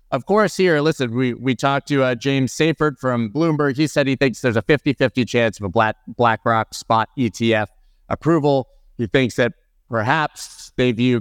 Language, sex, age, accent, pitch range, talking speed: English, male, 30-49, American, 110-140 Hz, 180 wpm